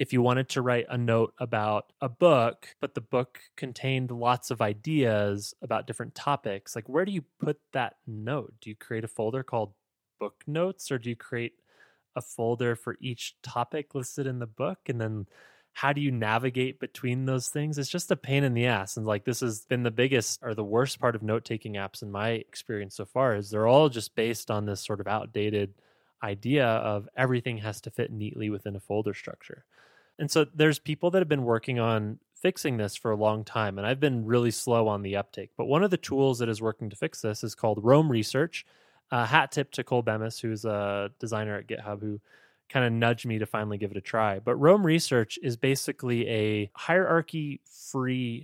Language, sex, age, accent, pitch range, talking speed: English, male, 20-39, American, 110-130 Hz, 215 wpm